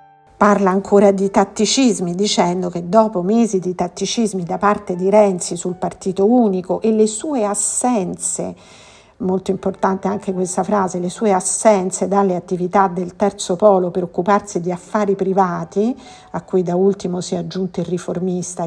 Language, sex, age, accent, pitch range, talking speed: Italian, female, 50-69, native, 175-200 Hz, 155 wpm